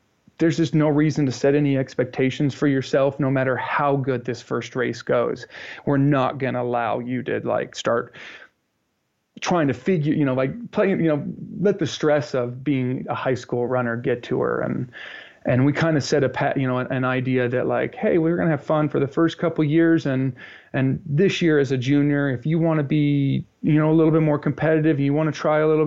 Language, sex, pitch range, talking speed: English, male, 125-150 Hz, 235 wpm